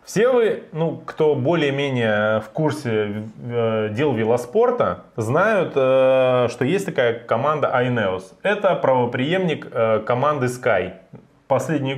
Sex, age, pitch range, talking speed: male, 20-39, 115-175 Hz, 115 wpm